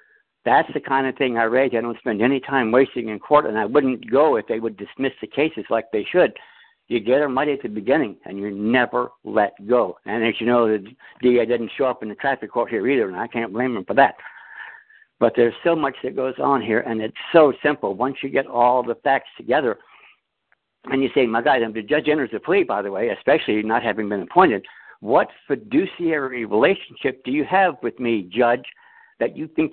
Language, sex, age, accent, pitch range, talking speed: English, male, 60-79, American, 115-150 Hz, 225 wpm